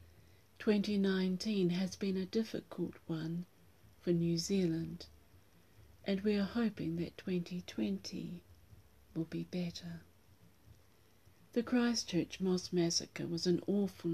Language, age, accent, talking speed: English, 50-69, British, 105 wpm